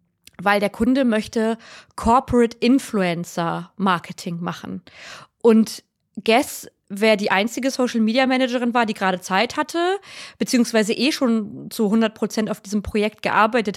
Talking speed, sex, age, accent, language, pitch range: 125 wpm, female, 20-39, German, German, 205-260 Hz